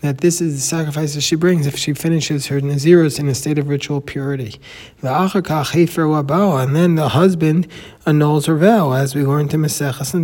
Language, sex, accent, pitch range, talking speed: English, male, American, 140-165 Hz, 190 wpm